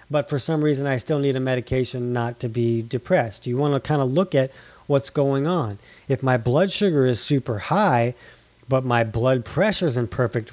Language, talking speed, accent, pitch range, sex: English, 210 wpm, American, 120-150 Hz, male